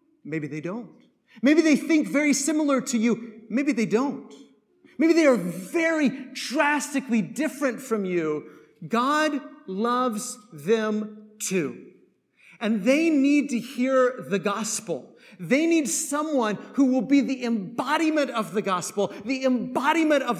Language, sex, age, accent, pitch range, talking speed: English, male, 30-49, American, 210-280 Hz, 135 wpm